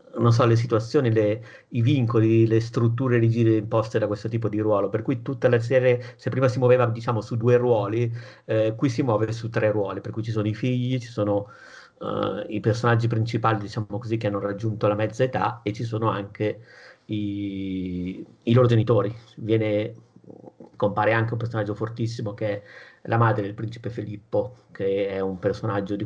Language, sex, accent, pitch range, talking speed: Italian, male, native, 100-115 Hz, 185 wpm